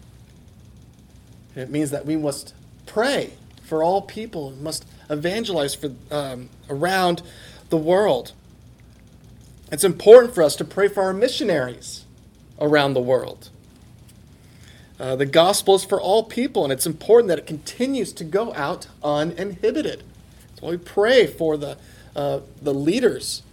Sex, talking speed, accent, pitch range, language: male, 145 wpm, American, 130-185 Hz, English